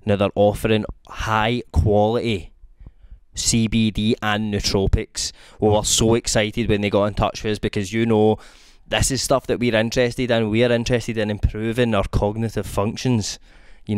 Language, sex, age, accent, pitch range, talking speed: English, male, 20-39, British, 105-125 Hz, 170 wpm